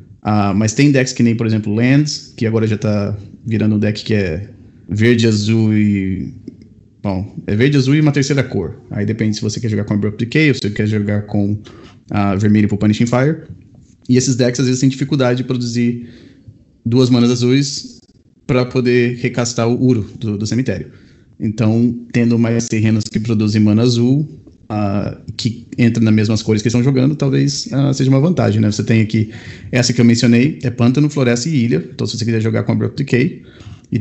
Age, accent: 20-39, Brazilian